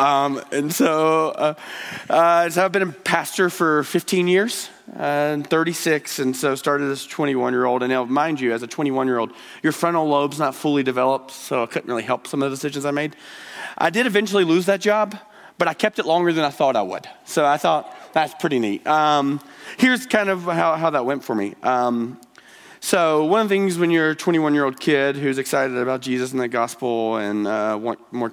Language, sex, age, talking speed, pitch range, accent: English, male, 30-49, 210 wpm, 110-155 Hz, American